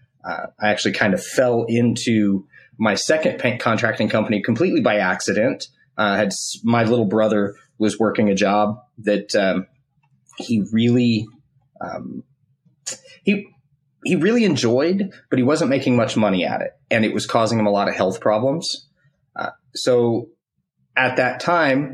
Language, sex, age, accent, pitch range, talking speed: English, male, 30-49, American, 100-125 Hz, 160 wpm